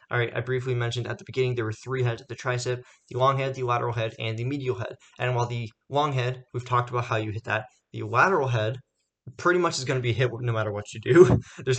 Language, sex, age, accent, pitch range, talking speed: English, male, 20-39, American, 115-140 Hz, 260 wpm